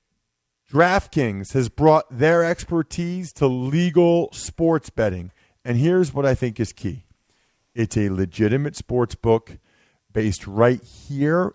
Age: 40-59